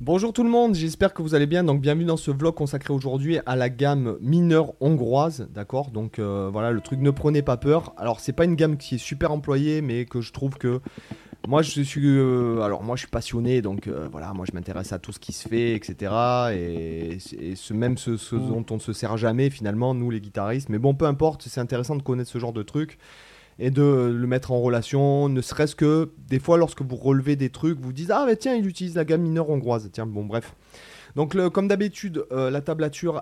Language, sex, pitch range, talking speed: French, male, 120-155 Hz, 235 wpm